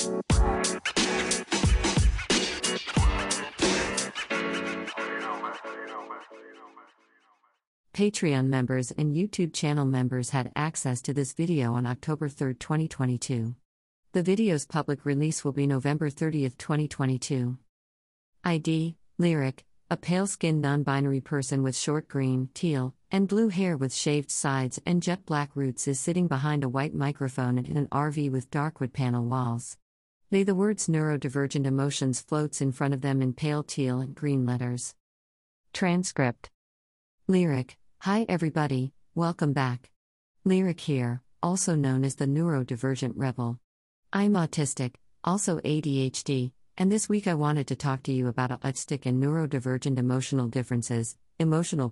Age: 50-69